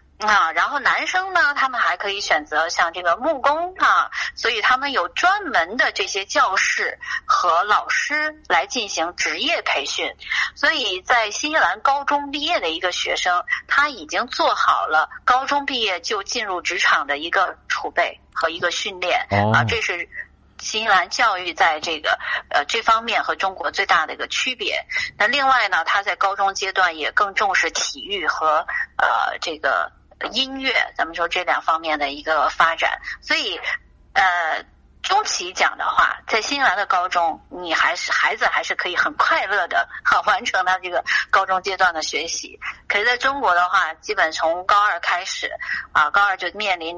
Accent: native